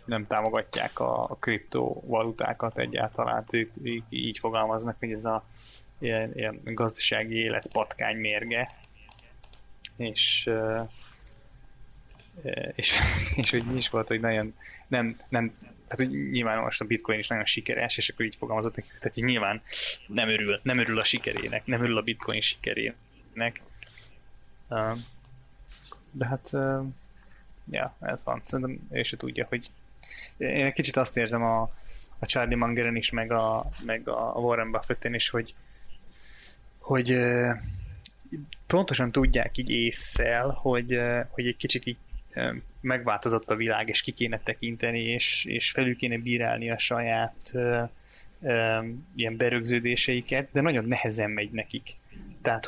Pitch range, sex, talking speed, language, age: 110-125 Hz, male, 130 wpm, Hungarian, 20-39